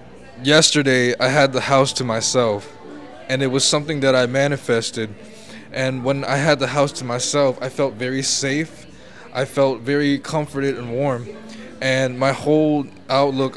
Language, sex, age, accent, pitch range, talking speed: English, male, 20-39, American, 125-145 Hz, 160 wpm